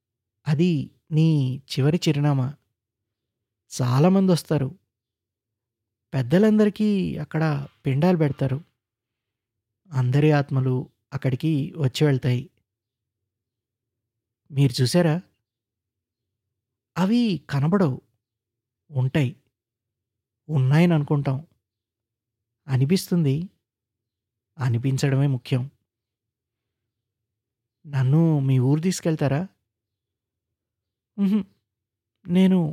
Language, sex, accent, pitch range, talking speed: Telugu, male, native, 110-150 Hz, 55 wpm